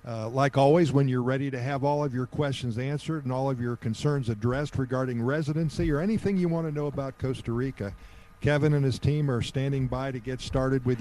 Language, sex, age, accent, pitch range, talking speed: English, male, 50-69, American, 115-140 Hz, 225 wpm